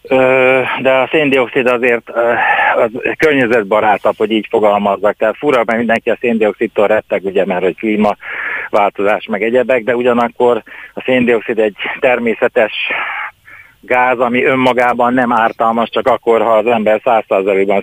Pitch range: 110-135 Hz